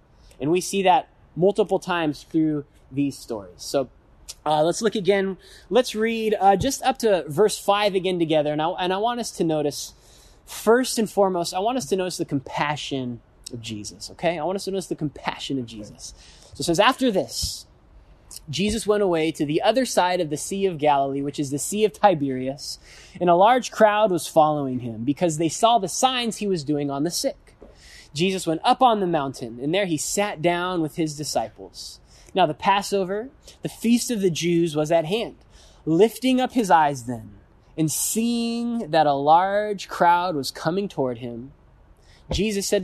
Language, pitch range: English, 135-200 Hz